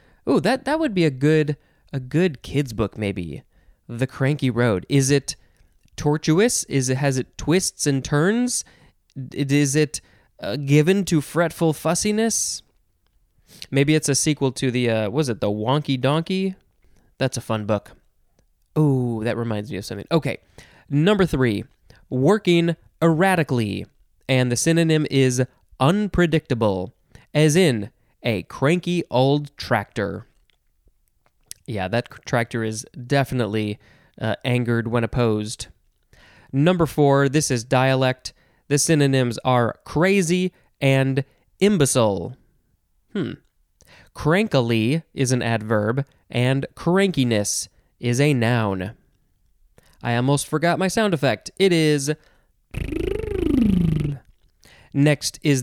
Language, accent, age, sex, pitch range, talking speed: English, American, 20-39, male, 115-155 Hz, 120 wpm